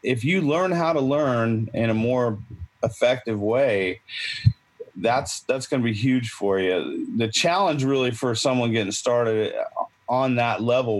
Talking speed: 160 wpm